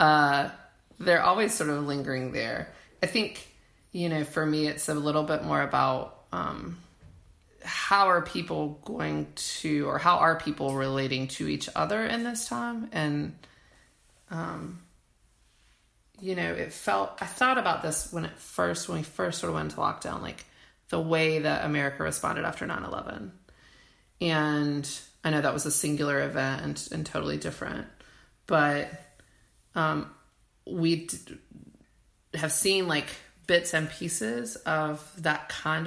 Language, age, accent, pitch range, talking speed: English, 30-49, American, 140-175 Hz, 150 wpm